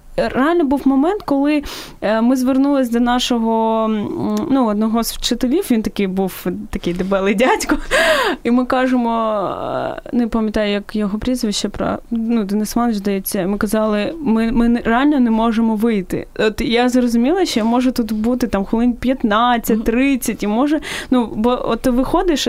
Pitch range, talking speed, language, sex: 215-255 Hz, 145 wpm, Ukrainian, female